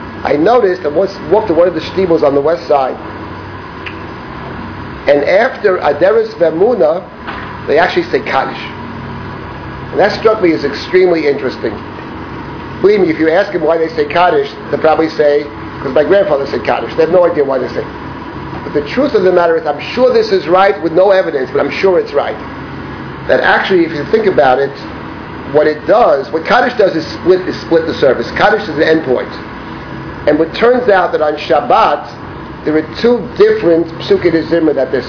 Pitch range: 150-200 Hz